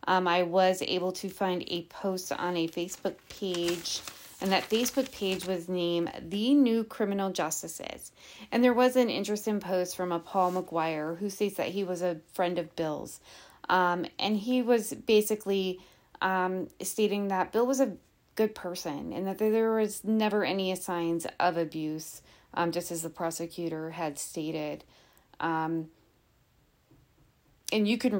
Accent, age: American, 30-49